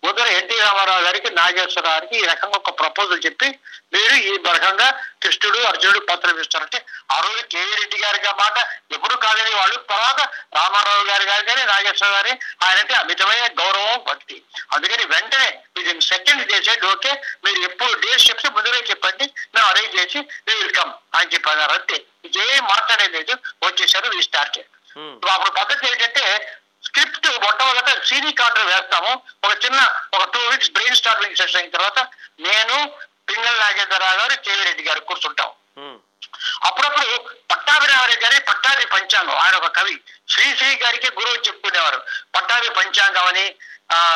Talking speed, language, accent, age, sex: 130 wpm, Telugu, native, 60-79, male